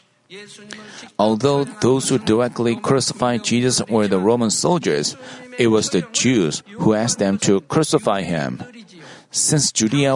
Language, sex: Korean, male